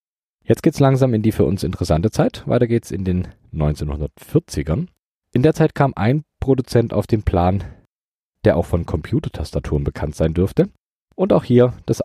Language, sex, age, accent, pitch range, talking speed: German, male, 40-59, German, 80-115 Hz, 170 wpm